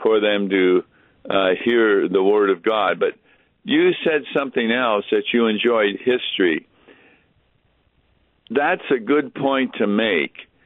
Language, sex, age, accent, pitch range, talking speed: English, male, 60-79, American, 105-130 Hz, 135 wpm